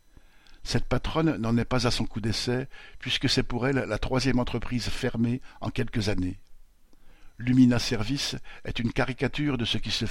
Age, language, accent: 60-79, French, French